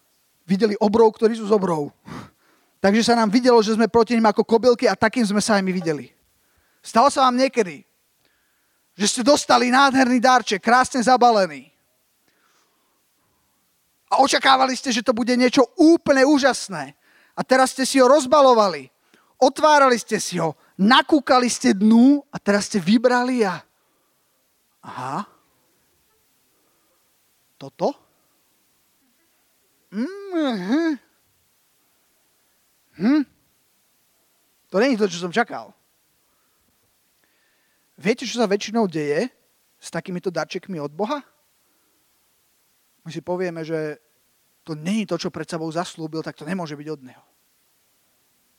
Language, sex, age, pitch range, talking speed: Slovak, male, 30-49, 175-255 Hz, 120 wpm